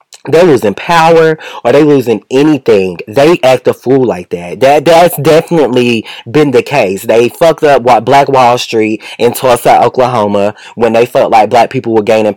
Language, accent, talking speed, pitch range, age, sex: English, American, 175 wpm, 110-150 Hz, 20-39, male